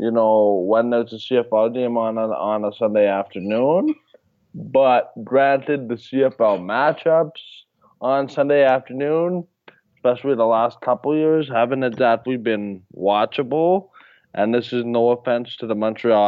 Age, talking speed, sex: 20-39, 140 wpm, male